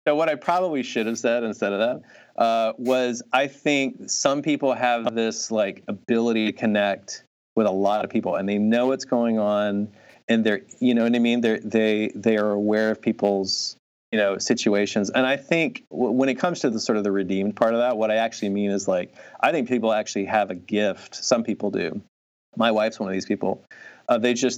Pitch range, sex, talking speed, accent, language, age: 105-120 Hz, male, 220 wpm, American, English, 30-49